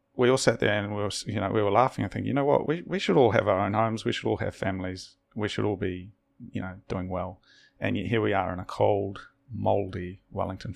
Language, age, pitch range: English, 30-49, 95-115 Hz